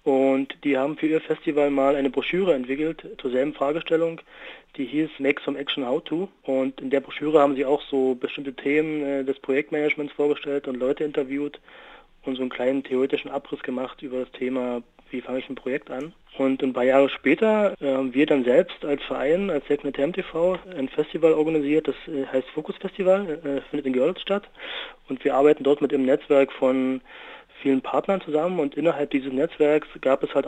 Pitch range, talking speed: 130-150 Hz, 195 wpm